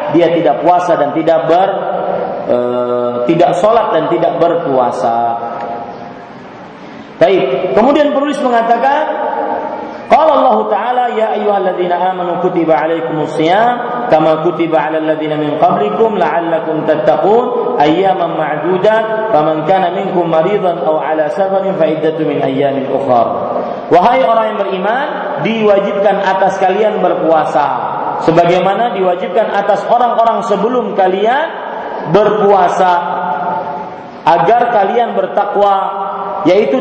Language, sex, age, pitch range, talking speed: Malay, male, 40-59, 170-210 Hz, 100 wpm